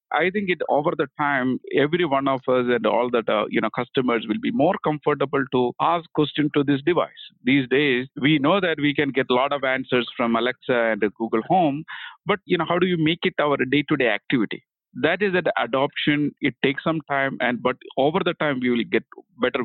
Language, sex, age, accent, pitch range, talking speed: English, male, 50-69, Indian, 130-165 Hz, 225 wpm